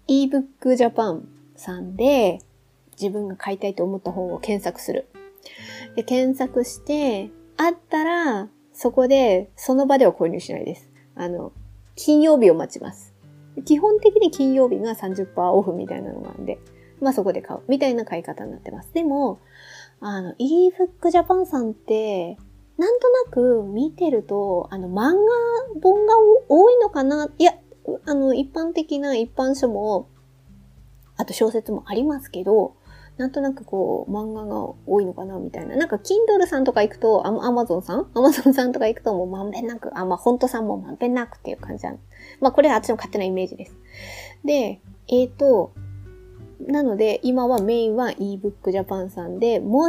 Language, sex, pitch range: Japanese, female, 185-285 Hz